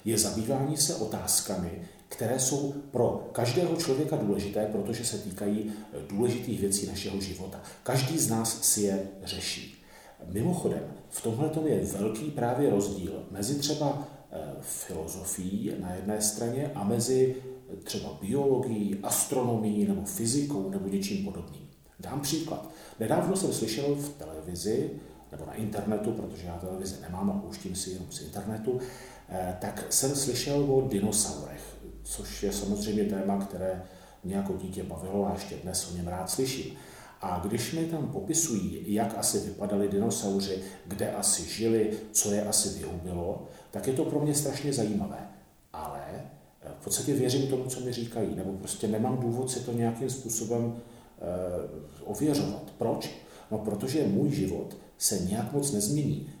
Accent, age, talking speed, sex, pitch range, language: native, 40-59, 145 wpm, male, 100-130 Hz, Czech